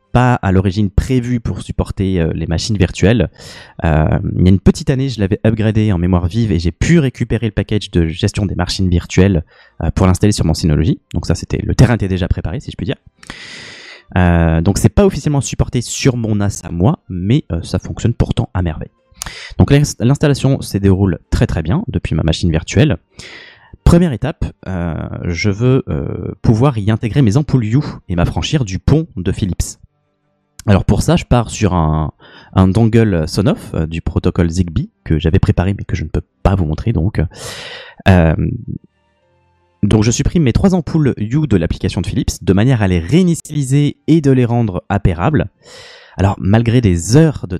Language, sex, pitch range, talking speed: French, male, 85-120 Hz, 190 wpm